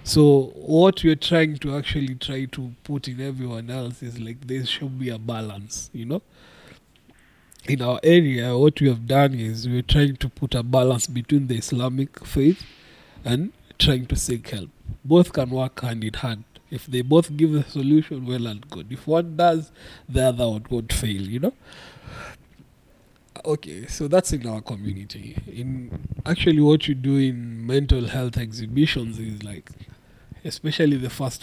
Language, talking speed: English, 170 wpm